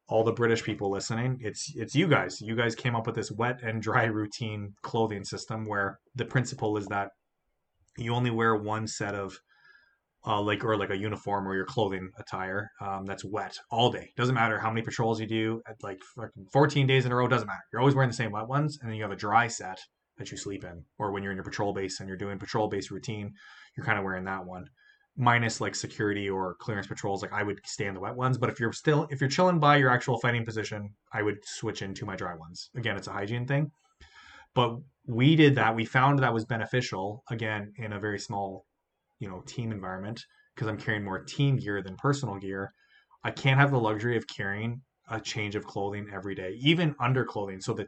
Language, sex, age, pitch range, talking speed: English, male, 20-39, 100-125 Hz, 230 wpm